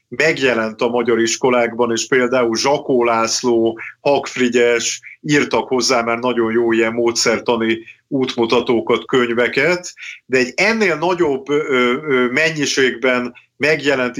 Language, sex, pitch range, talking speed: Hungarian, male, 115-135 Hz, 100 wpm